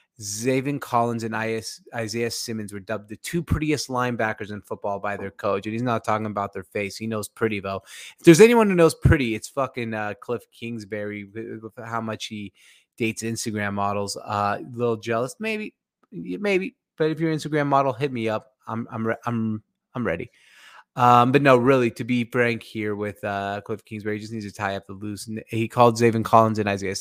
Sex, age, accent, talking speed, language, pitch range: male, 20-39, American, 205 wpm, English, 105-120 Hz